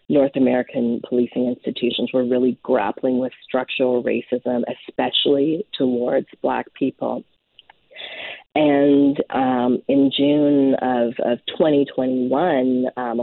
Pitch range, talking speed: 125-145 Hz, 95 wpm